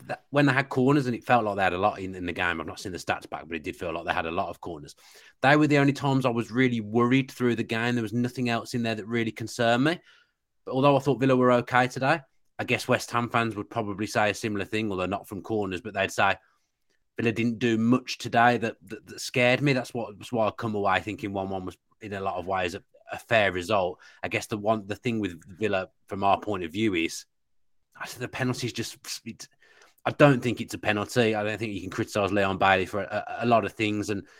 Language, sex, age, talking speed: English, male, 30-49, 265 wpm